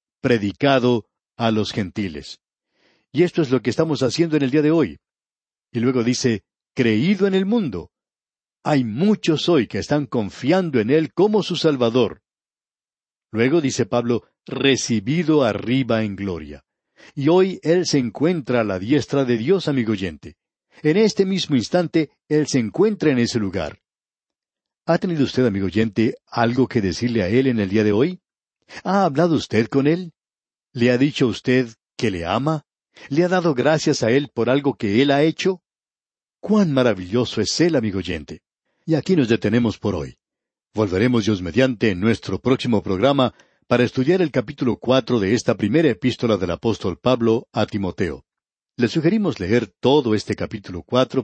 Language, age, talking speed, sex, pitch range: Spanish, 60-79, 165 wpm, male, 110-150 Hz